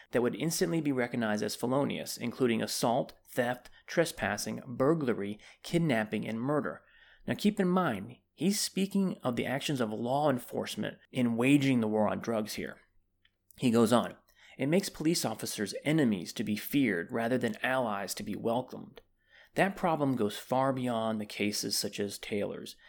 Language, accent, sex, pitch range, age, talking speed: English, American, male, 105-145 Hz, 30-49, 160 wpm